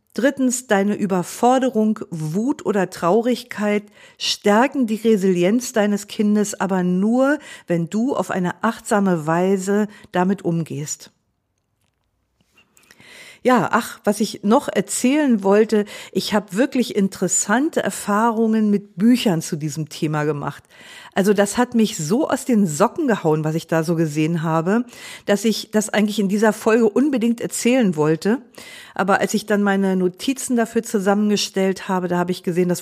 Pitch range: 180-225 Hz